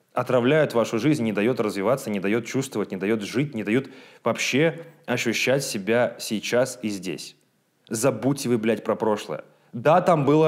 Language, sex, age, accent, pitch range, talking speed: Russian, male, 20-39, native, 115-140 Hz, 160 wpm